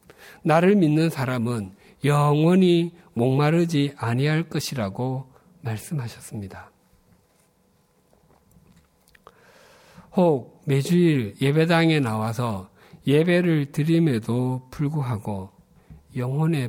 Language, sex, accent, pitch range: Korean, male, native, 110-155 Hz